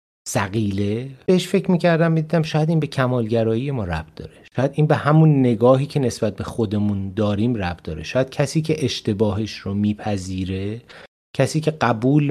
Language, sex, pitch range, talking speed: Persian, male, 110-135 Hz, 160 wpm